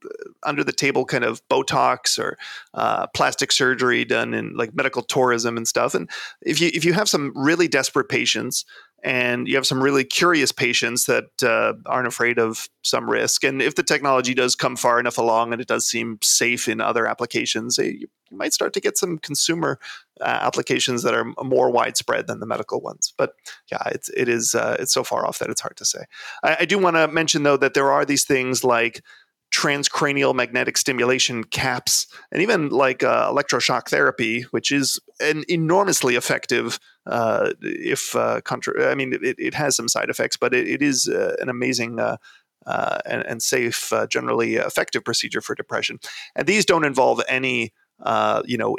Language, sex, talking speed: English, male, 190 wpm